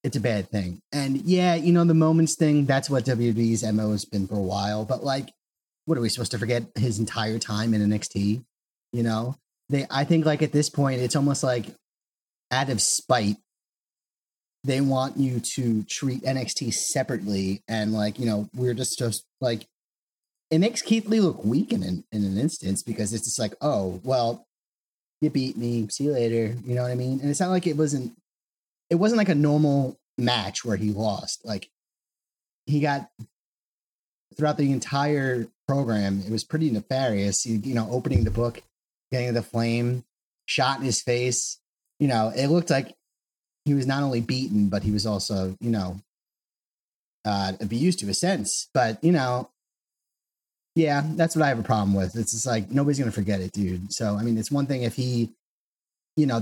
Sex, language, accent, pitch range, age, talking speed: male, English, American, 110-140 Hz, 30-49, 190 wpm